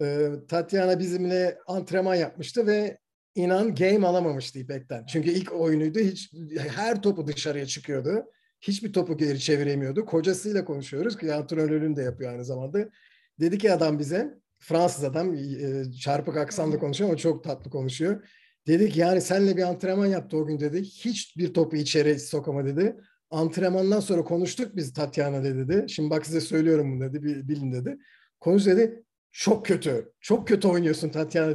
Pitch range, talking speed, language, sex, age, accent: 155-225 Hz, 145 wpm, Turkish, male, 50-69, native